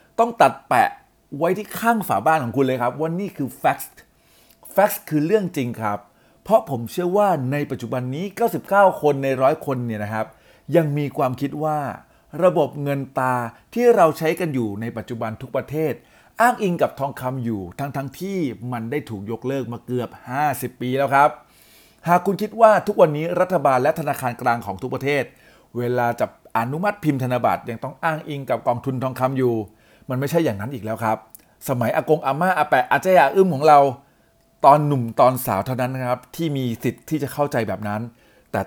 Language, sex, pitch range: Thai, male, 120-155 Hz